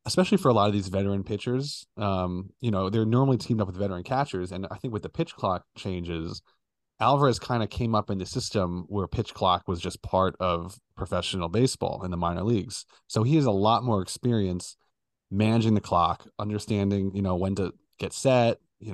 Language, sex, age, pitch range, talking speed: English, male, 30-49, 95-115 Hz, 205 wpm